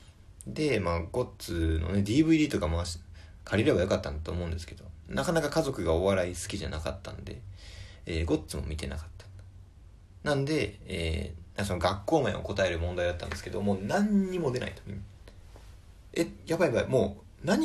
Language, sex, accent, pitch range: Japanese, male, native, 90-110 Hz